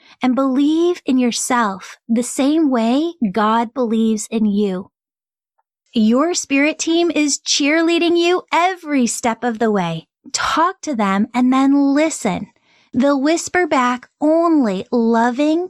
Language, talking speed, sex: English, 125 wpm, female